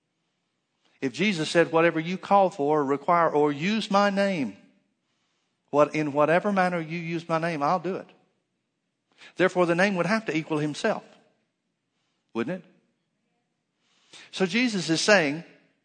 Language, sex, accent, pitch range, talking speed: English, male, American, 145-180 Hz, 140 wpm